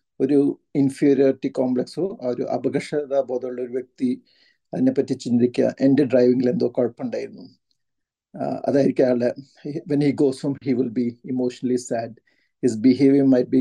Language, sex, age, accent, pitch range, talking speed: Malayalam, male, 50-69, native, 125-135 Hz, 75 wpm